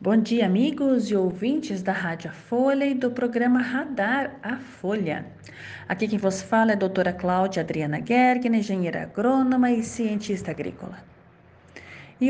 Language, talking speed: Portuguese, 150 wpm